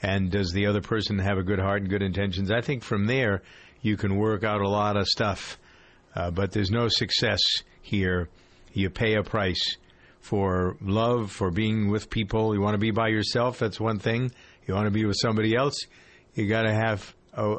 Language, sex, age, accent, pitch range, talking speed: English, male, 50-69, American, 100-120 Hz, 210 wpm